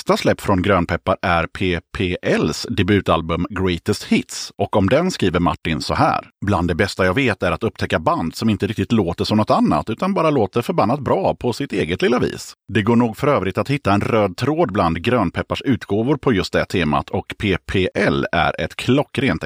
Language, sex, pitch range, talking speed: Swedish, male, 90-125 Hz, 195 wpm